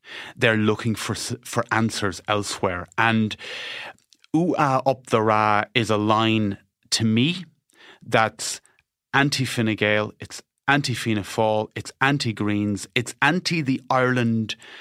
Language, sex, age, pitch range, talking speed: English, male, 30-49, 100-120 Hz, 115 wpm